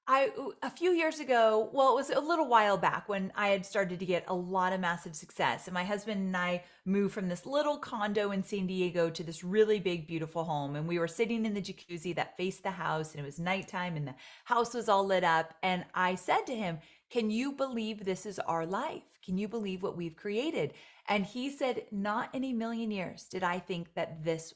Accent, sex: American, female